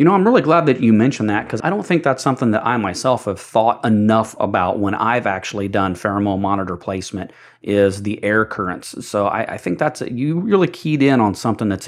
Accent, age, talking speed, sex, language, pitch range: American, 40-59, 230 wpm, male, English, 100-115 Hz